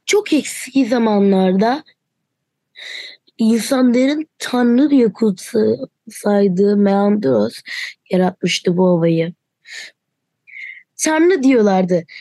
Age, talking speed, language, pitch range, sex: 20-39, 65 wpm, Turkish, 200-270 Hz, female